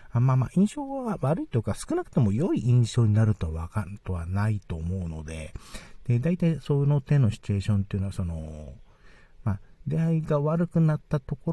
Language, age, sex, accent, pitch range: Japanese, 50-69, male, native, 100-140 Hz